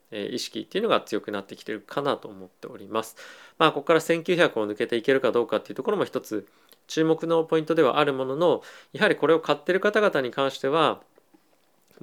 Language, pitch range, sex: Japanese, 110-165 Hz, male